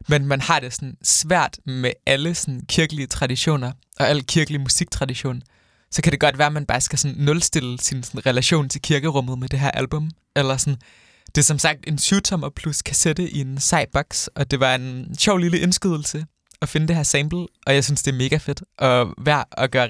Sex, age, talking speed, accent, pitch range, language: male, 20-39, 210 wpm, native, 135-165 Hz, Danish